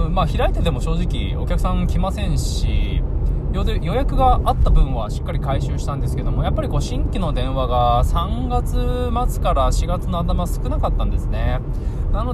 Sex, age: male, 20-39